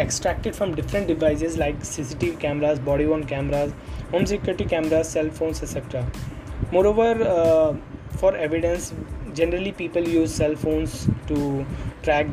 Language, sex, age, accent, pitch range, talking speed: English, male, 20-39, Indian, 140-180 Hz, 125 wpm